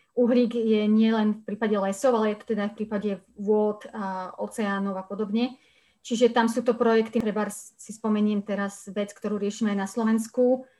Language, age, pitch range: Slovak, 30-49, 205-230 Hz